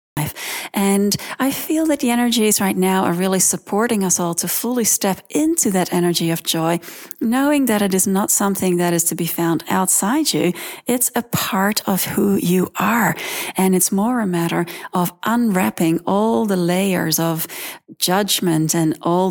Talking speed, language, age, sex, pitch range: 170 wpm, English, 40-59, female, 170-215 Hz